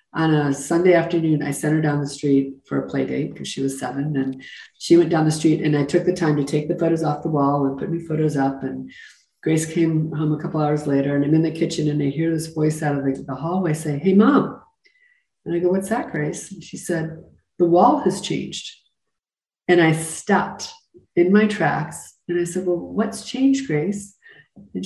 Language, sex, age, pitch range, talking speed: English, female, 40-59, 150-180 Hz, 225 wpm